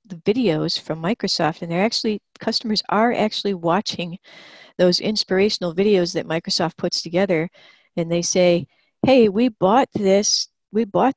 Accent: American